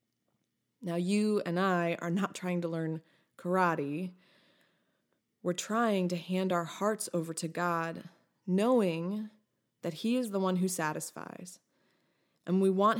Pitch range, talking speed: 175-210 Hz, 140 wpm